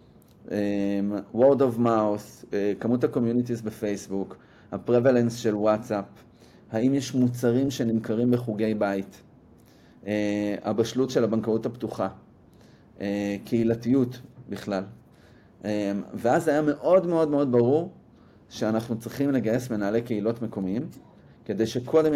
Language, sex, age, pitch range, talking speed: Hebrew, male, 30-49, 110-135 Hz, 95 wpm